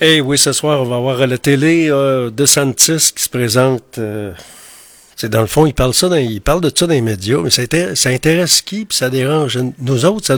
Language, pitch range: French, 115-150 Hz